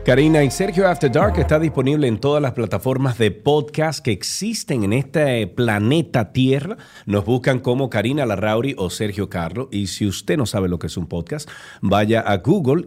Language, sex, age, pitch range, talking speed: Spanish, male, 40-59, 95-125 Hz, 185 wpm